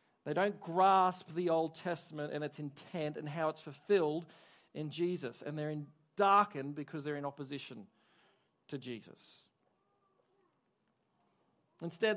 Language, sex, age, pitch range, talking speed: English, male, 40-59, 155-195 Hz, 125 wpm